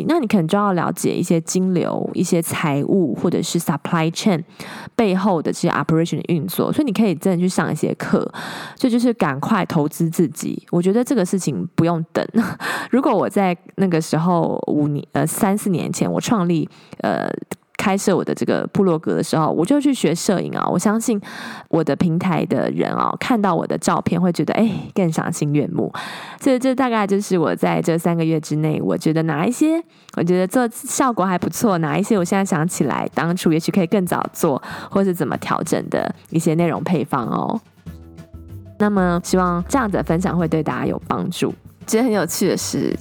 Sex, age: female, 20-39